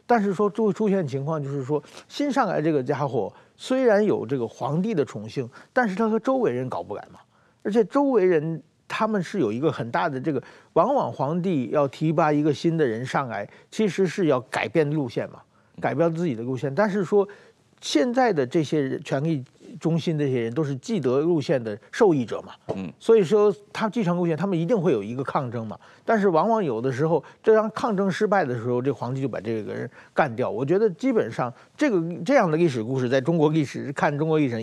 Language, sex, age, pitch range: Chinese, male, 50-69, 135-210 Hz